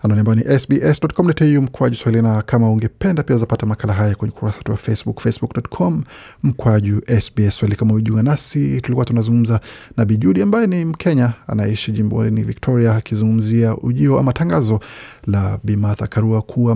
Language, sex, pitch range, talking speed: Swahili, male, 110-130 Hz, 145 wpm